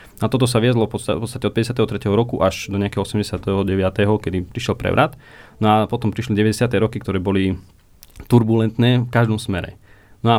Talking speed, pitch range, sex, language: 160 wpm, 100-115 Hz, male, Slovak